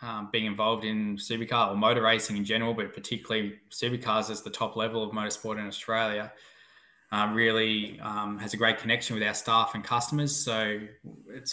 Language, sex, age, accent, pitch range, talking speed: English, male, 10-29, Australian, 105-120 Hz, 180 wpm